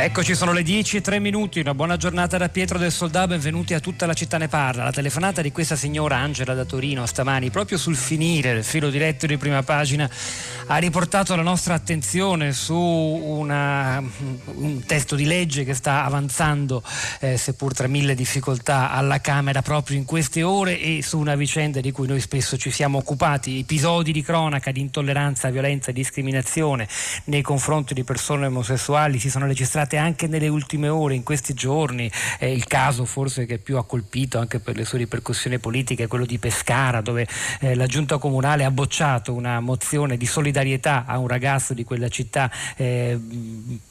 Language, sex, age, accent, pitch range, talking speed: Italian, male, 40-59, native, 125-150 Hz, 185 wpm